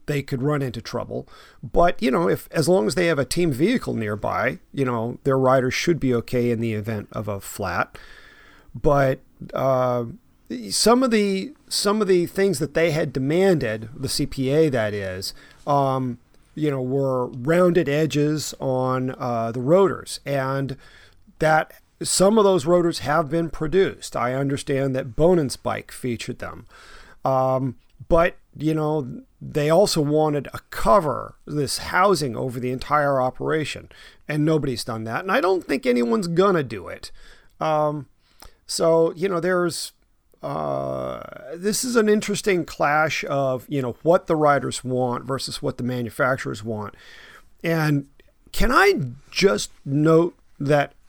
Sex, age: male, 40-59